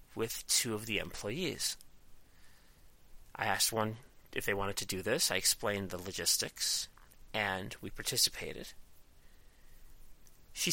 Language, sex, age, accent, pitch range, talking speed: English, male, 30-49, American, 105-135 Hz, 125 wpm